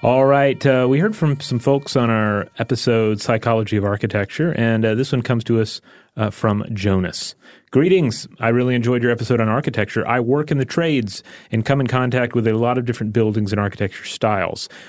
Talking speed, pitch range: 200 wpm, 105-130 Hz